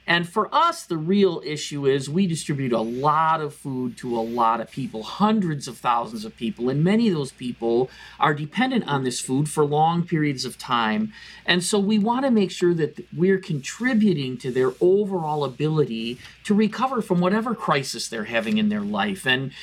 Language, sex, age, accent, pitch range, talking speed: English, male, 40-59, American, 140-205 Hz, 190 wpm